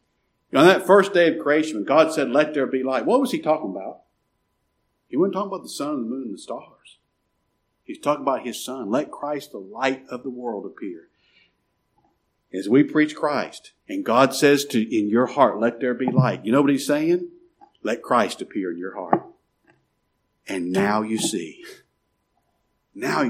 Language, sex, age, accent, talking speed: English, male, 50-69, American, 190 wpm